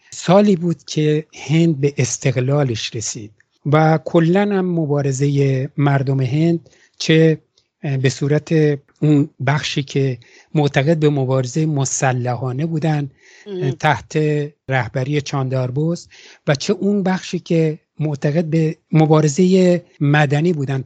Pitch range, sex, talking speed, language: 135-165 Hz, male, 105 wpm, English